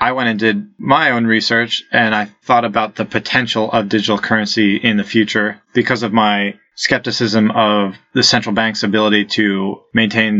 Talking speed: 175 wpm